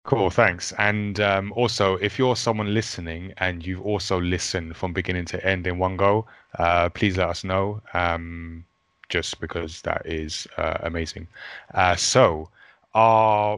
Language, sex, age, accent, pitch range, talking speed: English, male, 20-39, British, 90-110 Hz, 155 wpm